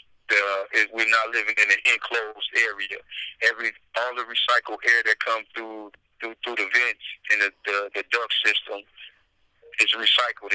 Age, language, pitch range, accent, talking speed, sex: 30-49, English, 105-120 Hz, American, 165 wpm, male